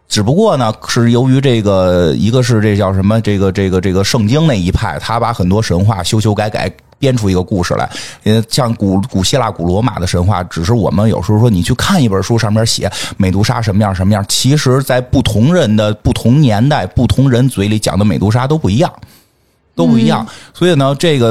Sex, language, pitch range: male, Chinese, 100-135 Hz